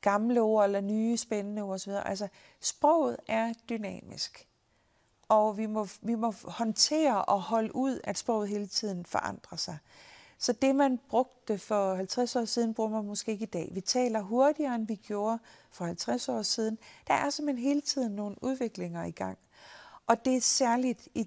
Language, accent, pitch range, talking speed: Danish, native, 195-240 Hz, 180 wpm